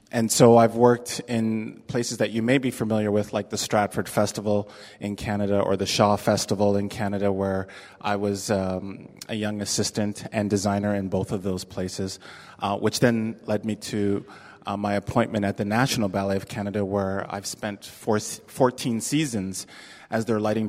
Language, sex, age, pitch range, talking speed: English, male, 30-49, 100-120 Hz, 180 wpm